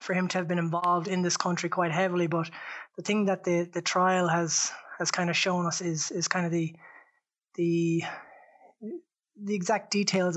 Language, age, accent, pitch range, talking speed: English, 20-39, Irish, 170-190 Hz, 190 wpm